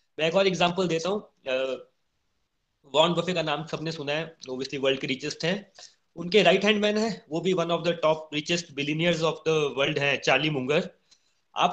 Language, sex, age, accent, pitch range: Hindi, male, 30-49, native, 160-200 Hz